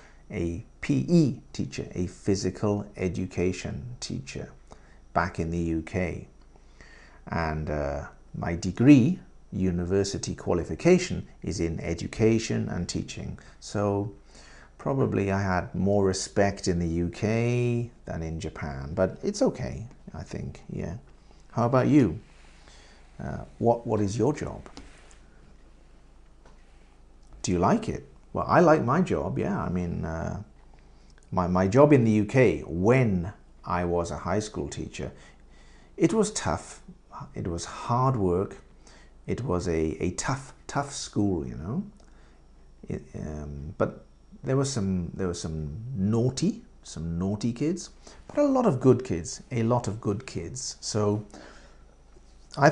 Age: 50-69